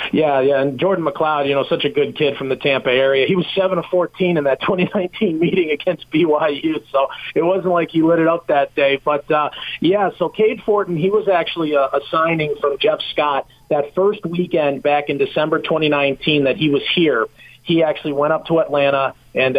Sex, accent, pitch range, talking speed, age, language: male, American, 140-170 Hz, 210 wpm, 40-59, English